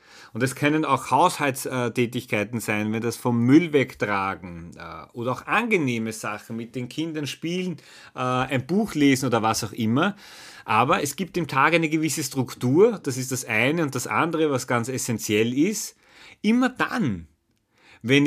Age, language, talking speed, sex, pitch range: 30-49, German, 160 wpm, male, 110-150 Hz